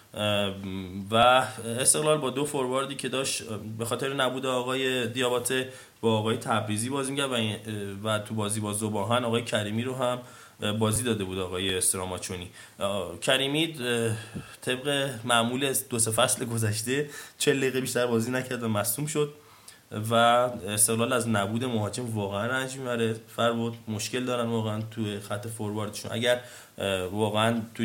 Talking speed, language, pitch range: 145 wpm, Persian, 105-125 Hz